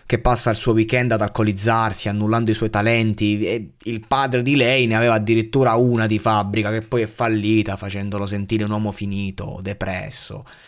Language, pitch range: Italian, 105-125 Hz